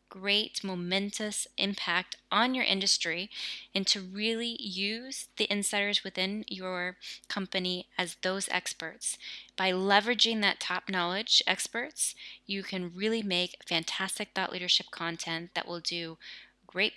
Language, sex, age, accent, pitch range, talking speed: English, female, 20-39, American, 180-205 Hz, 125 wpm